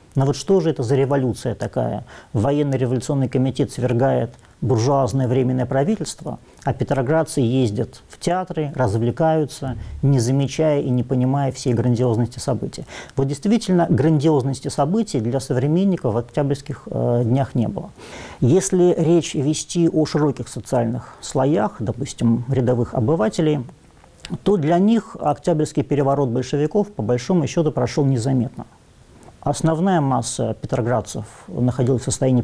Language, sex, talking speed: Russian, male, 125 wpm